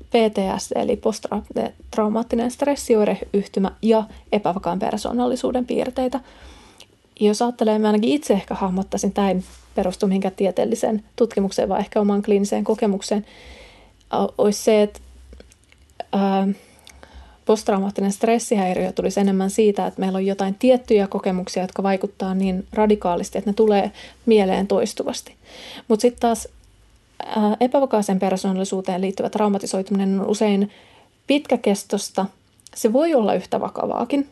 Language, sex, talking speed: Finnish, female, 110 wpm